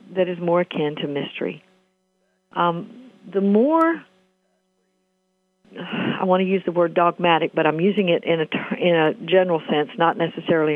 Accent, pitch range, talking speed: American, 175-200 Hz, 150 wpm